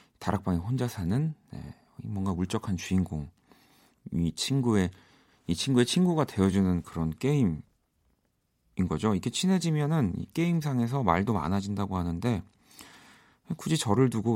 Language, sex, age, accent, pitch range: Korean, male, 40-59, native, 90-135 Hz